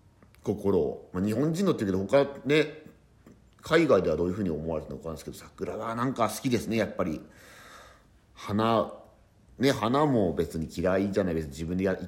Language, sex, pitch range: Japanese, male, 85-110 Hz